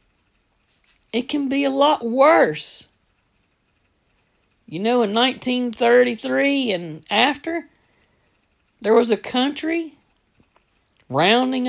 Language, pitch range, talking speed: English, 155-255 Hz, 85 wpm